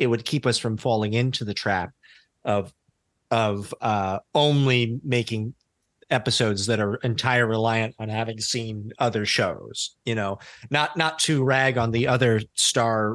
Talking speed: 155 wpm